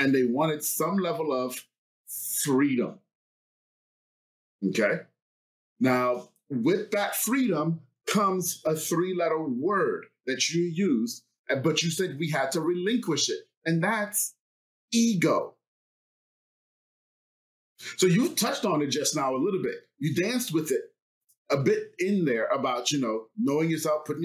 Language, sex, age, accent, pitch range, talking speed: English, male, 30-49, American, 140-210 Hz, 135 wpm